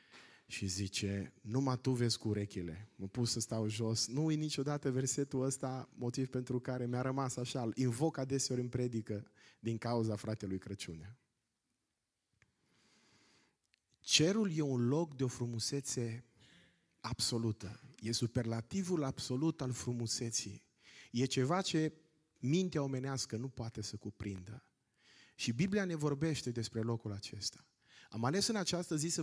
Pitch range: 115-145 Hz